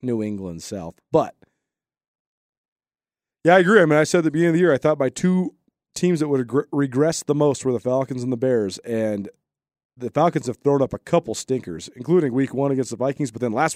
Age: 30-49